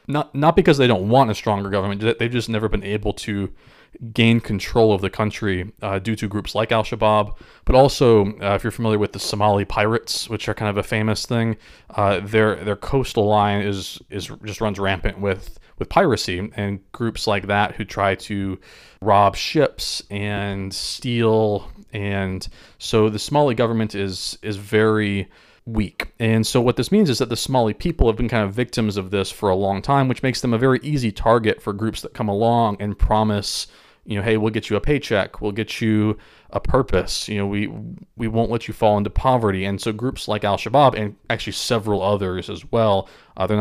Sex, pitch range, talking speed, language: male, 100-115 Hz, 205 wpm, English